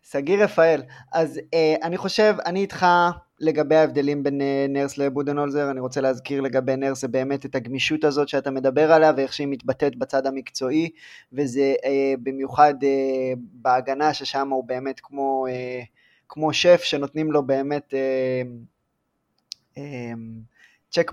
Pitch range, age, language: 135-160 Hz, 20-39, Hebrew